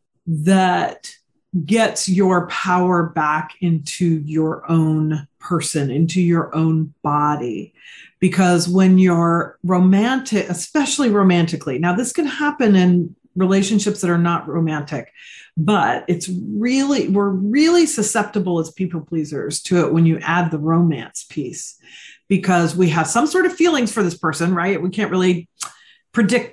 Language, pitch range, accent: English, 165-210 Hz, American